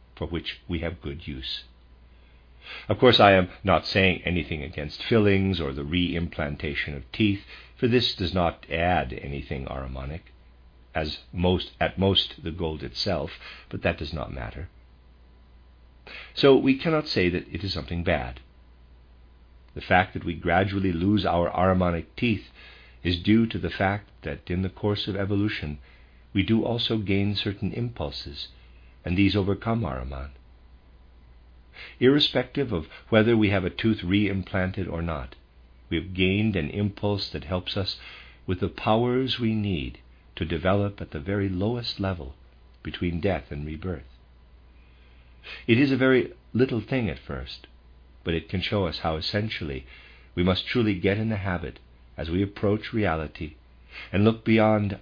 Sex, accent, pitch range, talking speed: male, American, 65-100 Hz, 150 wpm